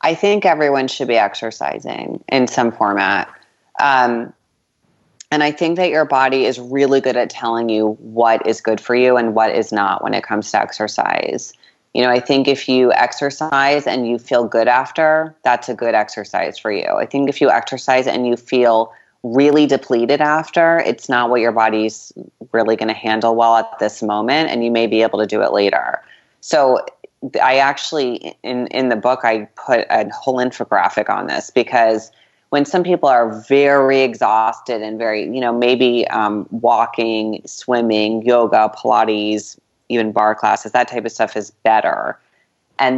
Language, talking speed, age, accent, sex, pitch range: English, 180 wpm, 30-49, American, female, 110-130 Hz